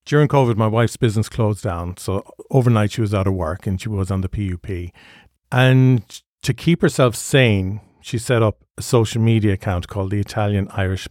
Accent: Irish